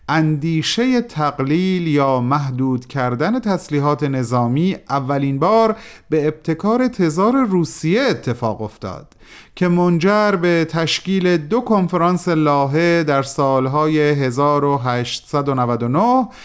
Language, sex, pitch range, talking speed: Persian, male, 130-190 Hz, 90 wpm